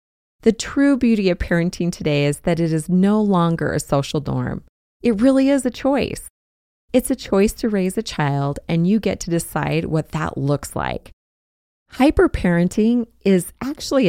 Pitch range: 145-205 Hz